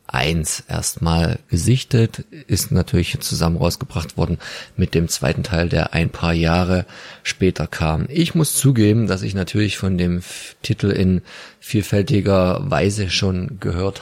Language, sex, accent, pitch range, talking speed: German, male, German, 95-110 Hz, 135 wpm